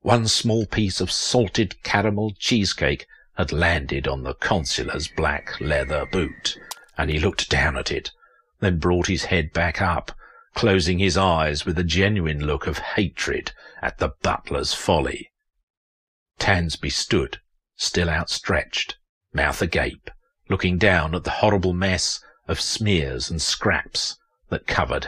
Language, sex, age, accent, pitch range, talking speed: English, male, 50-69, British, 80-110 Hz, 140 wpm